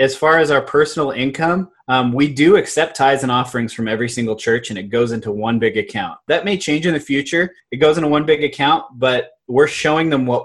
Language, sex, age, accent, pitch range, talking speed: English, male, 20-39, American, 120-150 Hz, 235 wpm